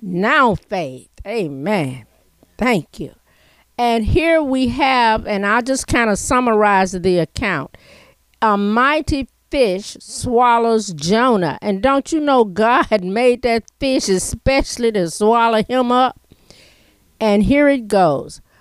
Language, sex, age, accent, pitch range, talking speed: English, female, 50-69, American, 195-255 Hz, 130 wpm